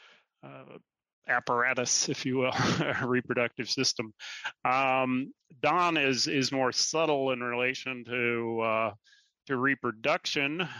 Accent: American